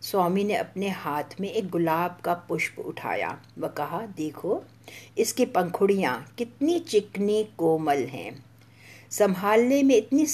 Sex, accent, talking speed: female, Indian, 130 wpm